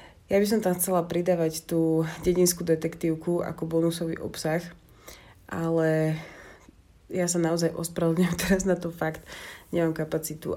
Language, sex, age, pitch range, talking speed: Slovak, female, 30-49, 155-170 Hz, 130 wpm